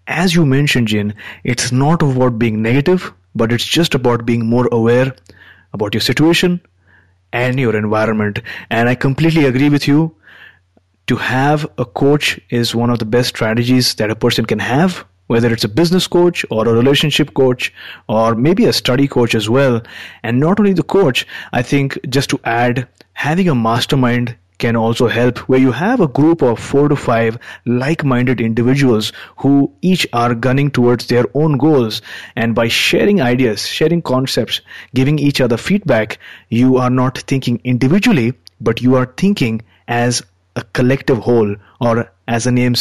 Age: 30-49